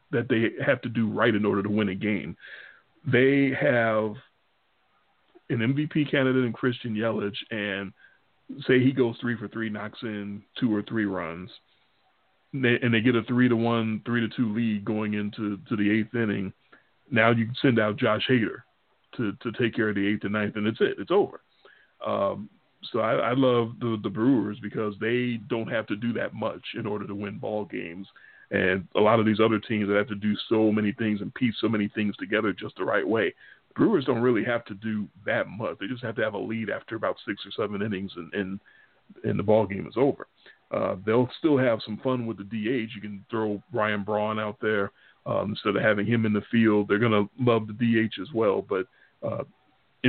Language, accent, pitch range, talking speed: English, American, 105-120 Hz, 215 wpm